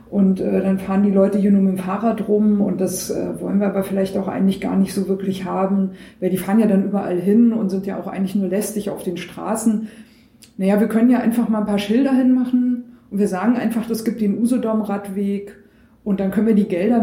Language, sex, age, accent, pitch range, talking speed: German, female, 50-69, German, 170-205 Hz, 235 wpm